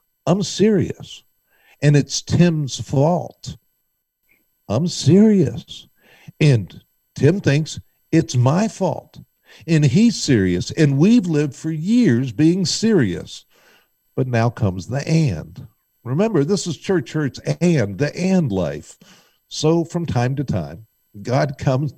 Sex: male